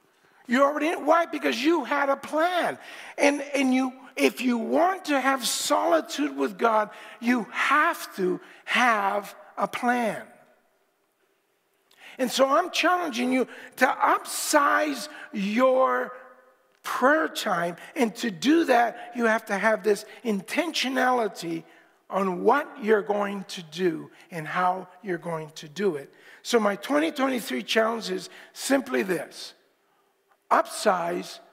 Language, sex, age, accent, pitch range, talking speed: English, male, 50-69, American, 205-295 Hz, 125 wpm